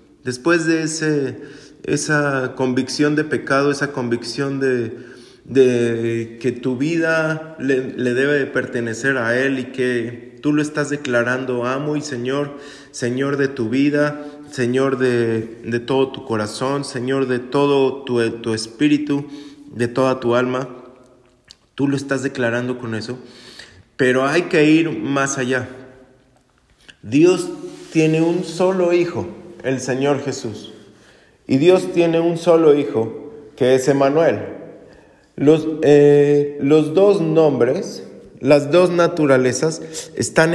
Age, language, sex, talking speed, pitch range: 30-49, Spanish, male, 125 wpm, 125-150 Hz